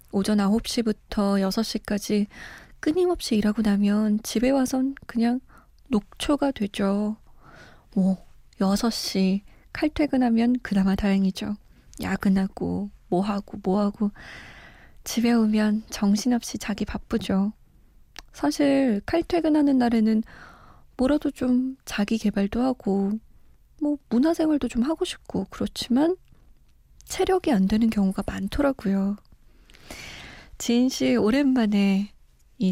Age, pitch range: 20-39, 200-250 Hz